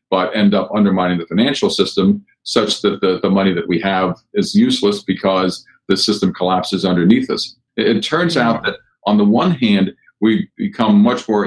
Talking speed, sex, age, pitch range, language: 190 wpm, male, 50-69, 95-115 Hz, English